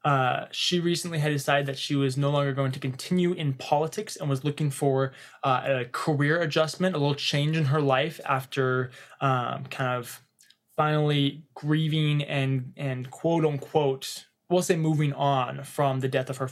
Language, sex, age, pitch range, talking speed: English, male, 20-39, 130-155 Hz, 170 wpm